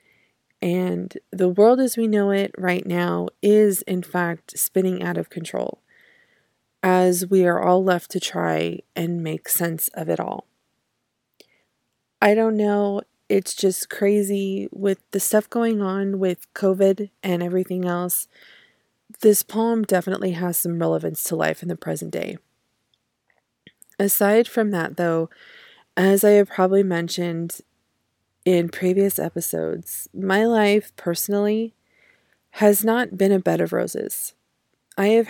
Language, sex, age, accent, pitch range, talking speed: English, female, 20-39, American, 175-205 Hz, 140 wpm